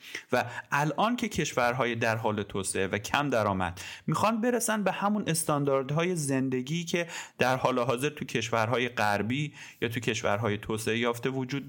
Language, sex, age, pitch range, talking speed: Persian, male, 30-49, 115-150 Hz, 150 wpm